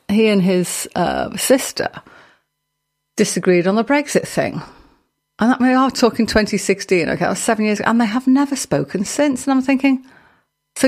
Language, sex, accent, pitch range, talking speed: English, female, British, 165-230 Hz, 170 wpm